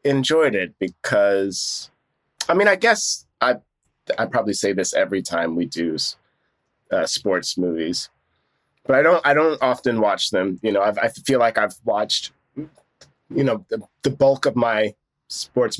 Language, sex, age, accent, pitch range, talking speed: English, male, 20-39, American, 105-150 Hz, 165 wpm